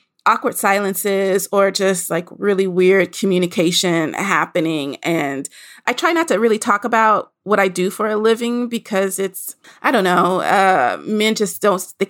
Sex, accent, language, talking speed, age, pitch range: female, American, English, 165 wpm, 30-49, 180-220 Hz